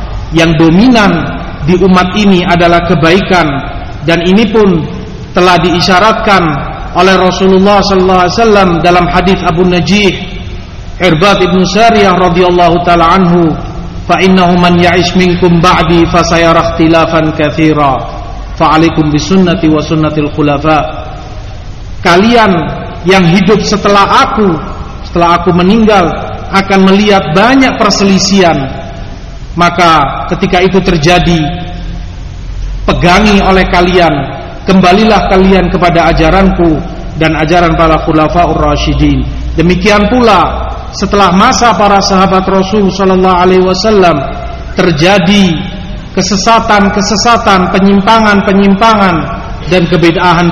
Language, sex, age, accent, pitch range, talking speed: Indonesian, male, 40-59, native, 165-195 Hz, 100 wpm